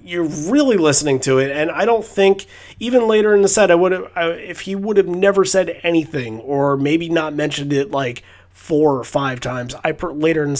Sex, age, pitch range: male, 30-49, 105-150 Hz